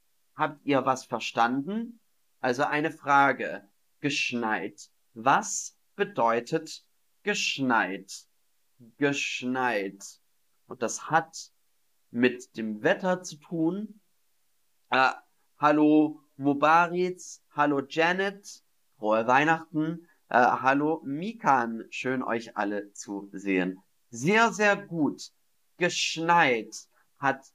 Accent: German